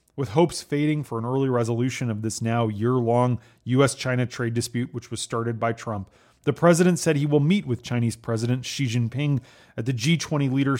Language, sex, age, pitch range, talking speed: English, male, 30-49, 115-140 Hz, 190 wpm